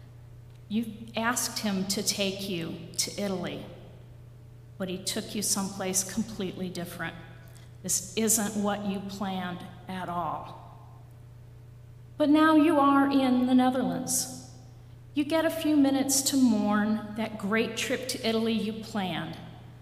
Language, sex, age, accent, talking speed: English, female, 50-69, American, 130 wpm